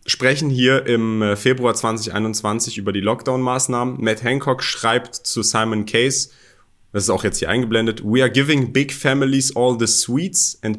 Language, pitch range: German, 110-135 Hz